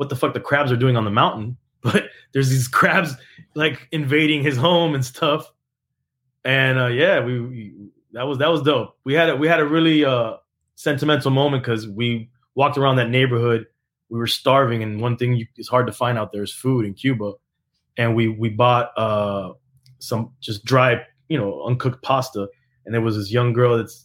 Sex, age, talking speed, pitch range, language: male, 20-39, 200 wpm, 110-135 Hz, English